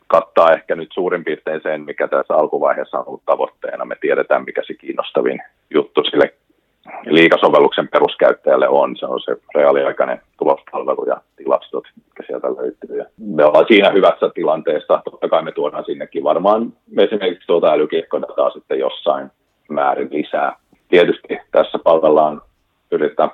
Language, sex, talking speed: Finnish, male, 140 wpm